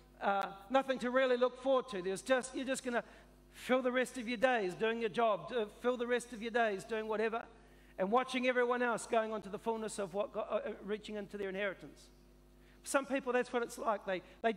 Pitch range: 200-240 Hz